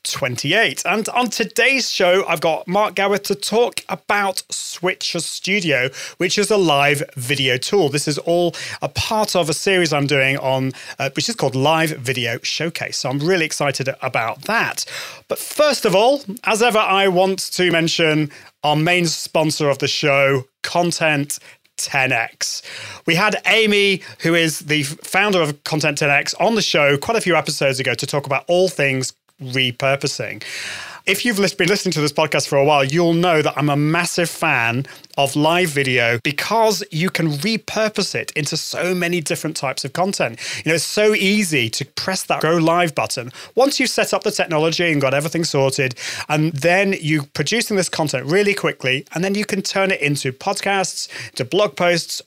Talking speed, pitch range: 180 wpm, 140-190 Hz